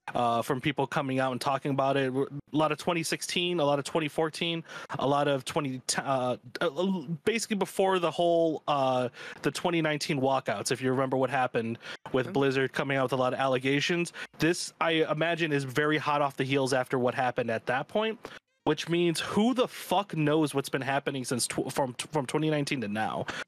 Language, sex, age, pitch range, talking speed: English, male, 20-39, 130-170 Hz, 190 wpm